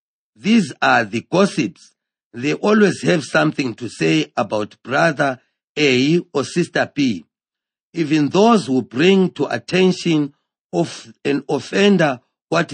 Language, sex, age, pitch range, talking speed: English, male, 50-69, 135-185 Hz, 120 wpm